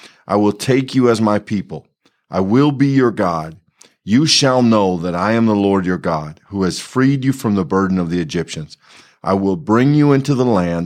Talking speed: 215 wpm